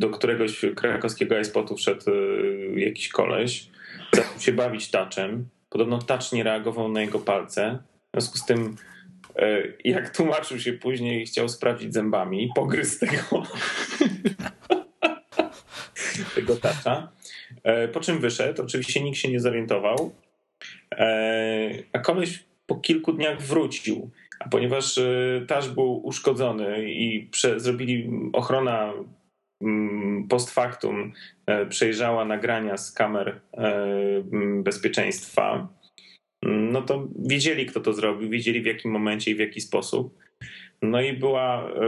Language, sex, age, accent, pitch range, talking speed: Polish, male, 30-49, native, 110-130 Hz, 120 wpm